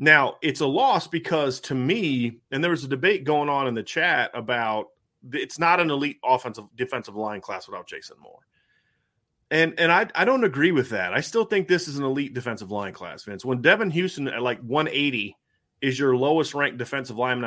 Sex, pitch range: male, 125-155 Hz